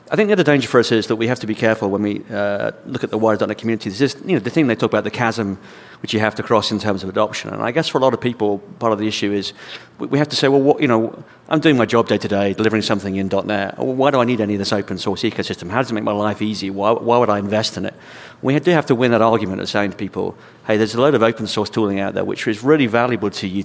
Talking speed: 310 wpm